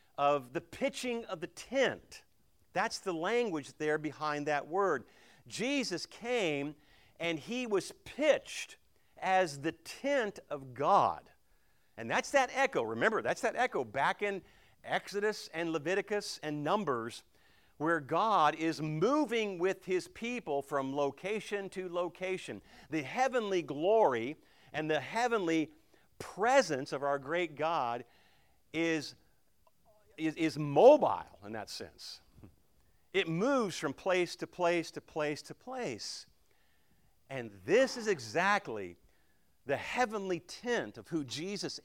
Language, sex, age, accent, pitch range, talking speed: English, male, 50-69, American, 150-230 Hz, 125 wpm